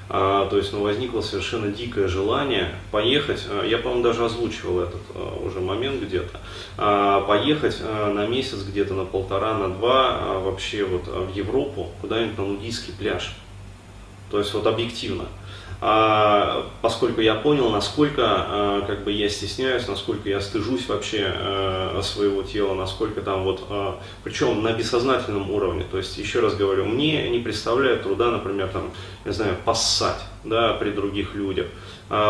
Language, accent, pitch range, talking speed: Russian, native, 100-115 Hz, 150 wpm